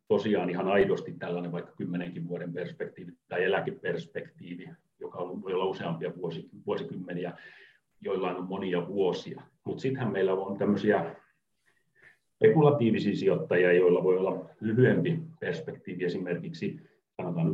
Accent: native